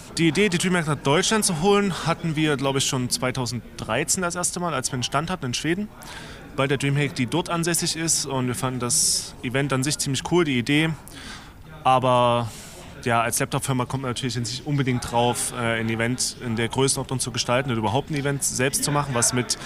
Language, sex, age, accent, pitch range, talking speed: German, male, 20-39, German, 120-150 Hz, 210 wpm